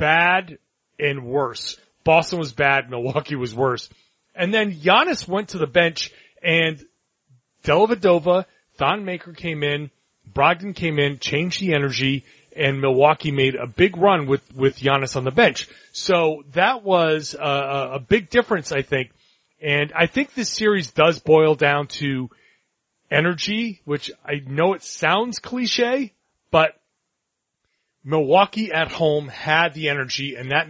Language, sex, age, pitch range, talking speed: English, male, 30-49, 135-170 Hz, 145 wpm